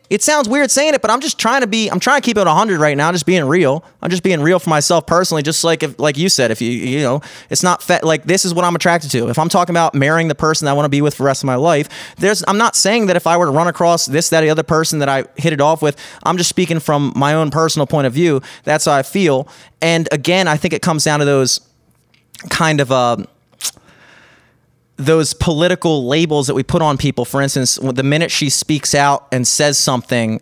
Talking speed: 265 wpm